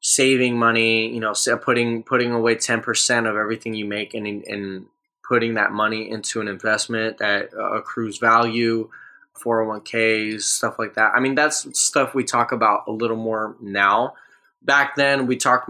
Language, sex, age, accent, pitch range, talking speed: English, male, 10-29, American, 110-125 Hz, 175 wpm